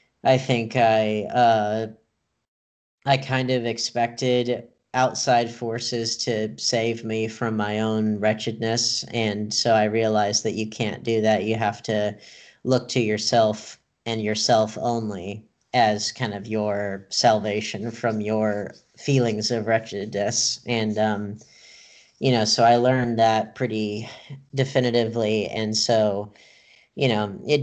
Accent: American